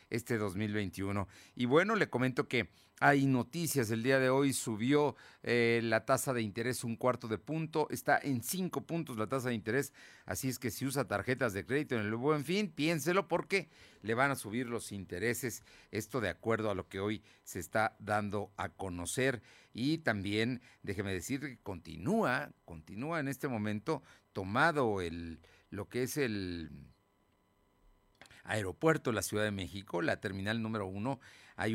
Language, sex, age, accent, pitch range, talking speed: Spanish, male, 50-69, Mexican, 100-125 Hz, 170 wpm